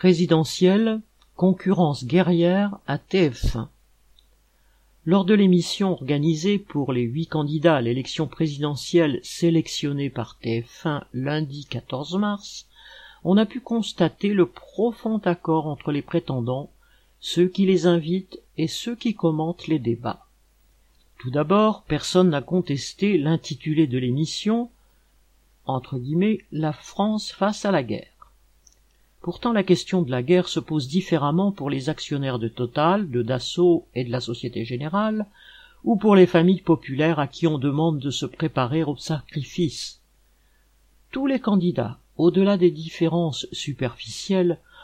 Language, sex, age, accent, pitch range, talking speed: French, male, 50-69, French, 145-185 Hz, 135 wpm